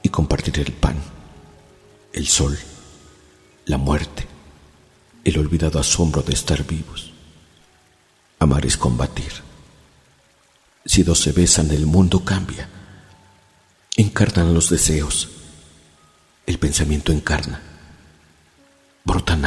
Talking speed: 95 wpm